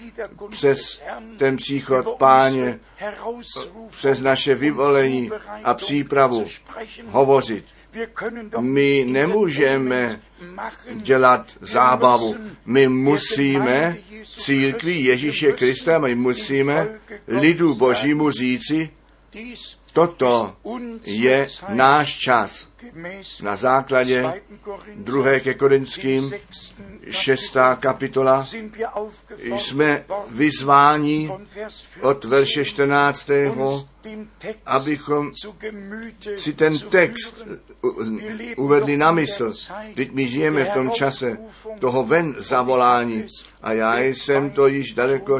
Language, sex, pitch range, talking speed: Czech, male, 130-200 Hz, 80 wpm